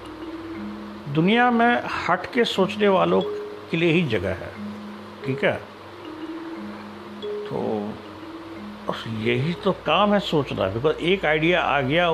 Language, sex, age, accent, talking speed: Hindi, male, 60-79, native, 130 wpm